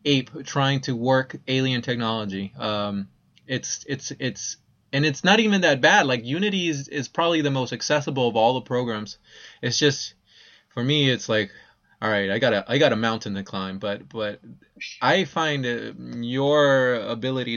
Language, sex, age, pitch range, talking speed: English, male, 20-39, 115-150 Hz, 170 wpm